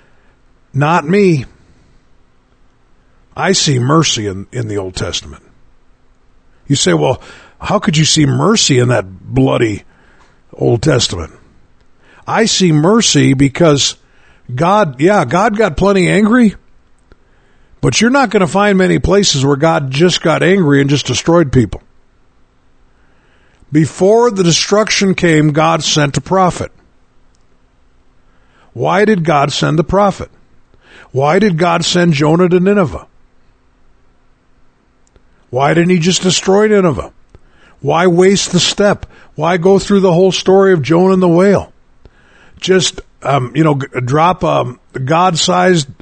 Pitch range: 135-190 Hz